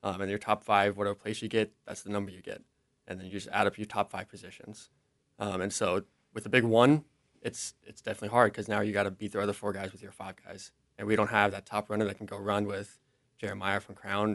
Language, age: English, 20-39